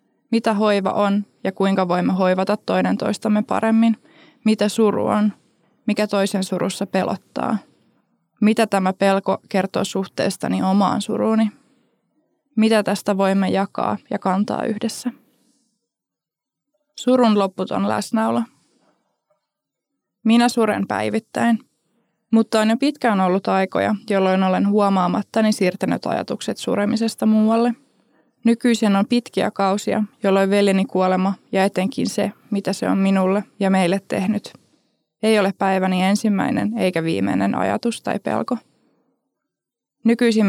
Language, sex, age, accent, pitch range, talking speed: Finnish, female, 20-39, native, 195-230 Hz, 115 wpm